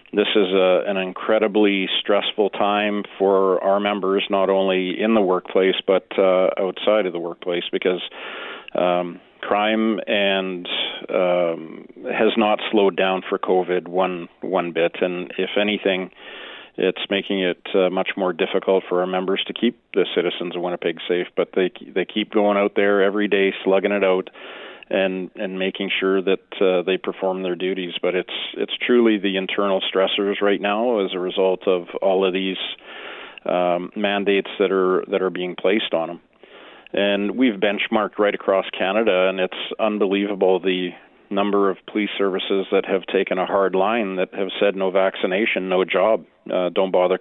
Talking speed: 170 wpm